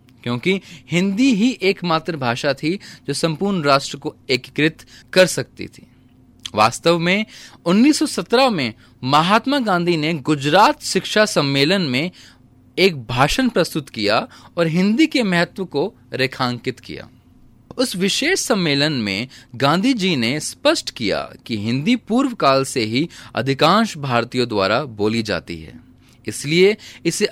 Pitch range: 125-195 Hz